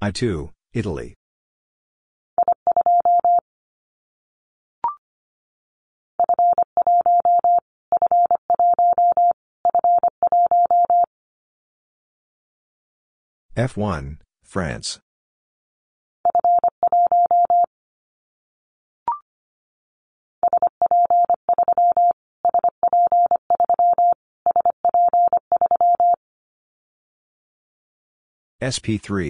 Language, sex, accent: English, male, American